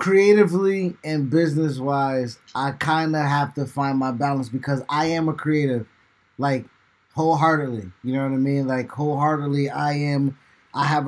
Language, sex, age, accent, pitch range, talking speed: English, male, 20-39, American, 135-160 Hz, 155 wpm